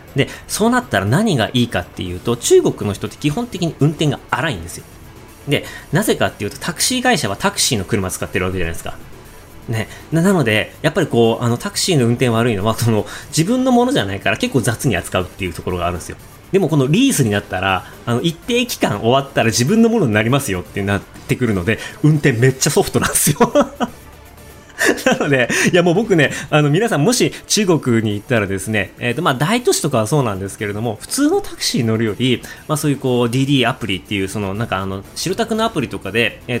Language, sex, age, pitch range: Japanese, male, 30-49, 105-155 Hz